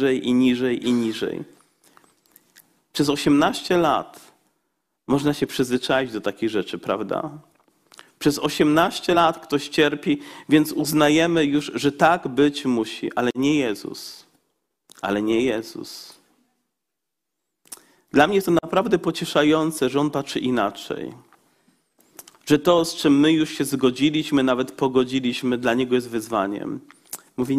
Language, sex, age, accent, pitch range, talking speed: Polish, male, 40-59, native, 135-165 Hz, 120 wpm